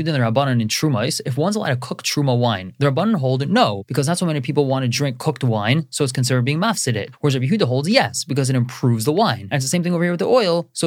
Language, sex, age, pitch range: English, male, 20-39, 125-170 Hz